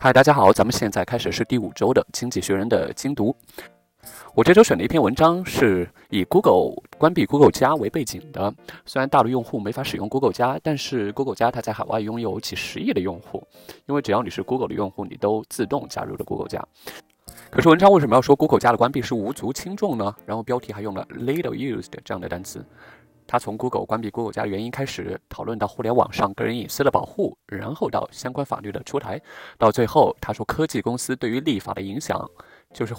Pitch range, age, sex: 105-135 Hz, 20-39, male